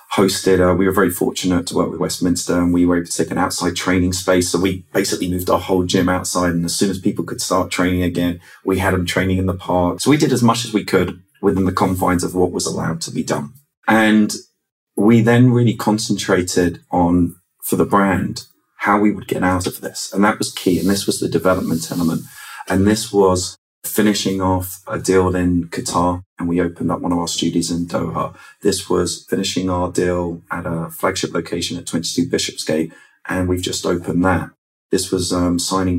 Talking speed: 215 wpm